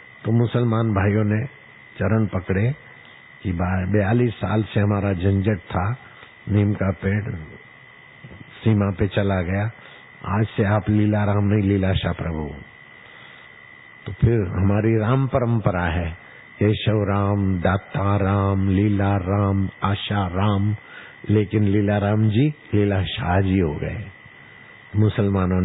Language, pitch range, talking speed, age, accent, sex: Hindi, 95-110 Hz, 125 wpm, 50-69, native, male